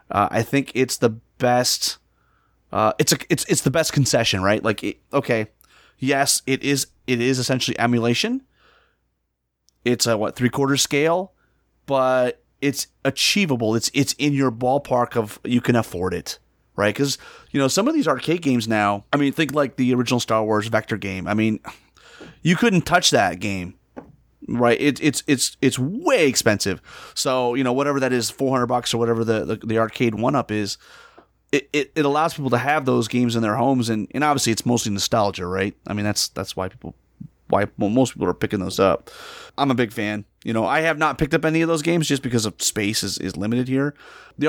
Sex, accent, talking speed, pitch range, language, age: male, American, 205 wpm, 110-145 Hz, English, 30-49